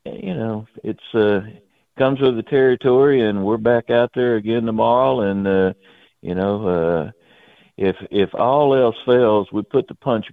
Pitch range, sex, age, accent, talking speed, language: 90-115 Hz, male, 60-79, American, 170 wpm, English